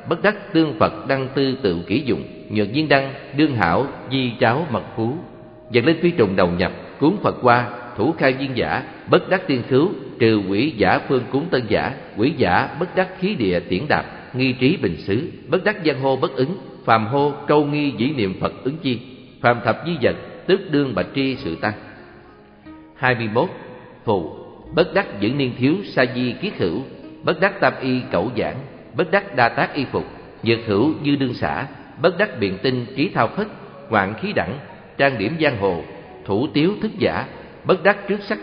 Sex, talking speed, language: male, 200 wpm, Vietnamese